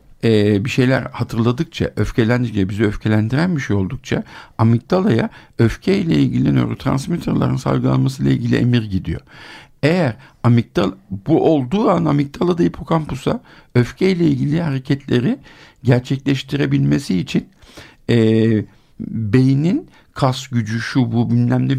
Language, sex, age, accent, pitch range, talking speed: Turkish, male, 60-79, native, 105-140 Hz, 115 wpm